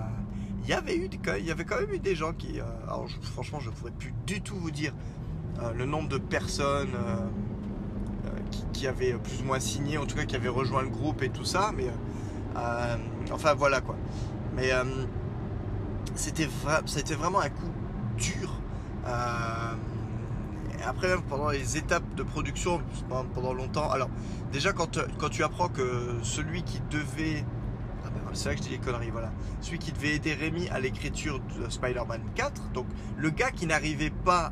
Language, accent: French, French